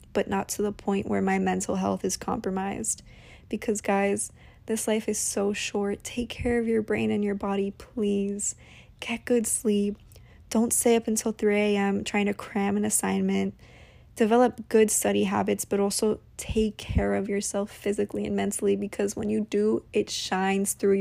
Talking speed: 170 wpm